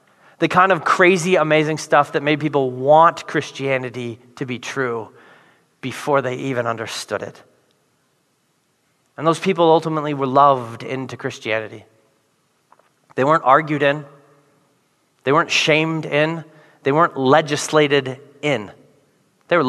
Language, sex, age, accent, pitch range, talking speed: English, male, 30-49, American, 140-175 Hz, 125 wpm